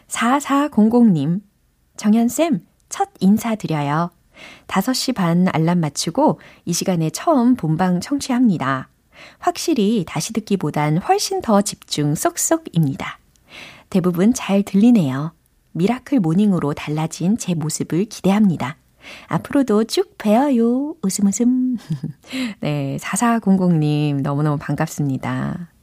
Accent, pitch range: native, 160-245 Hz